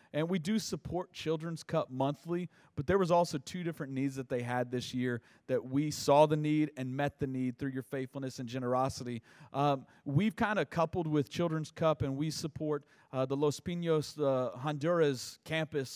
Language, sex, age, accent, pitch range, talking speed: English, male, 30-49, American, 130-155 Hz, 190 wpm